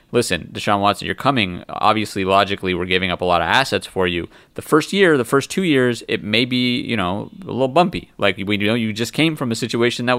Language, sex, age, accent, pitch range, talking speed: English, male, 30-49, American, 95-120 Hz, 240 wpm